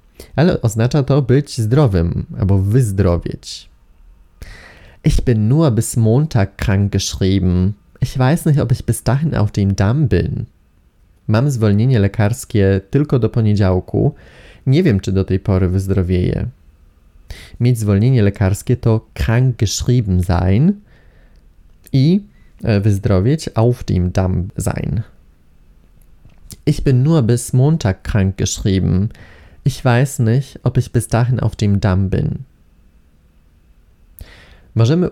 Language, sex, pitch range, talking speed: Polish, male, 95-135 Hz, 120 wpm